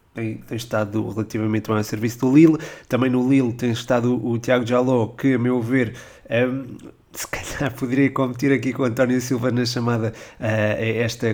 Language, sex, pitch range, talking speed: Portuguese, male, 115-130 Hz, 190 wpm